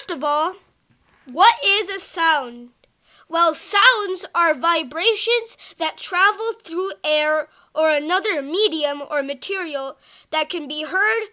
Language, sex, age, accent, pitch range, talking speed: English, female, 20-39, American, 305-400 Hz, 125 wpm